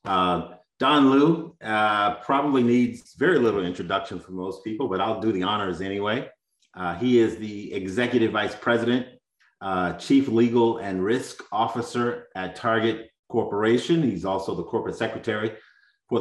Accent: American